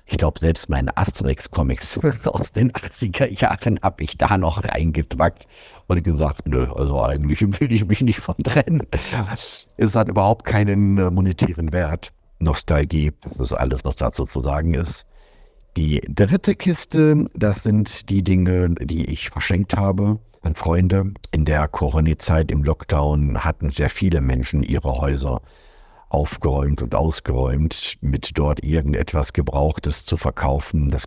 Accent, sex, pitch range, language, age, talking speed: German, male, 70-90 Hz, German, 60-79, 140 wpm